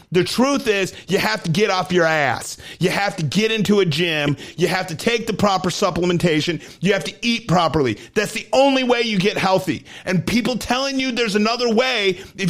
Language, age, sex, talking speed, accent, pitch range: English, 40-59, male, 210 wpm, American, 165-220 Hz